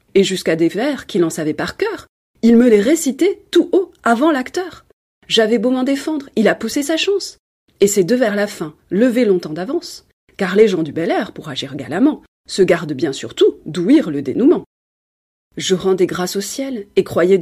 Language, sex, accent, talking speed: French, female, French, 200 wpm